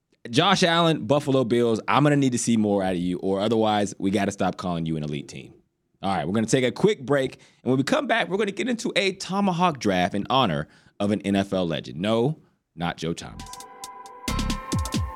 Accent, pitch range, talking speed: American, 90-140 Hz, 225 wpm